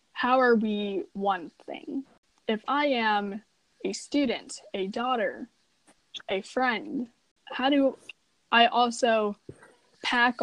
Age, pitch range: 10-29, 210-260 Hz